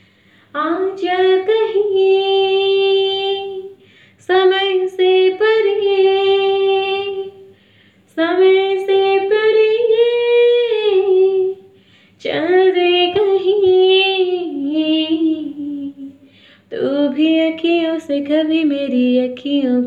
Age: 20-39